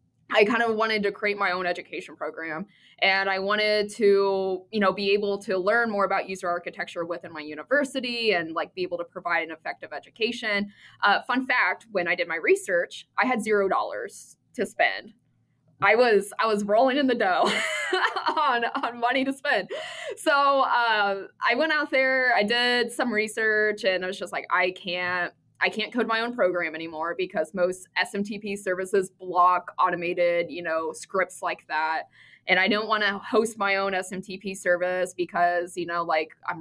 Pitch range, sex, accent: 175-215 Hz, female, American